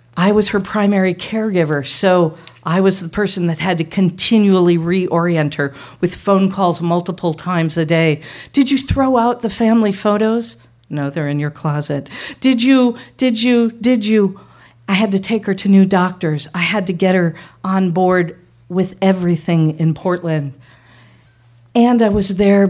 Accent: American